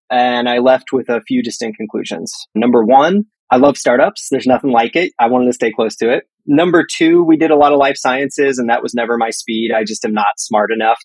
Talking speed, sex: 245 wpm, male